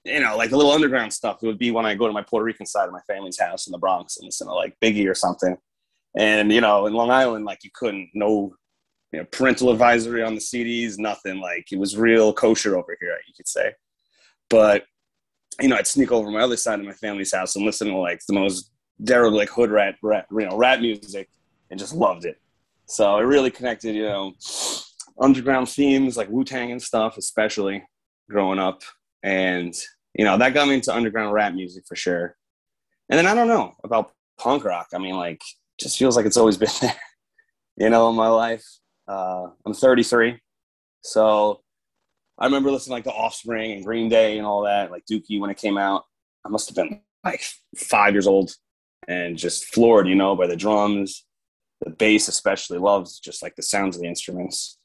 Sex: male